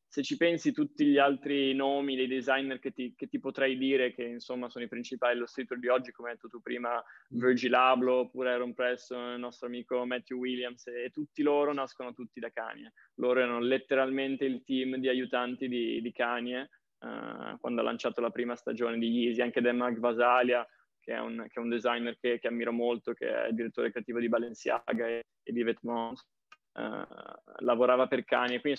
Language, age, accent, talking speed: Italian, 20-39, native, 200 wpm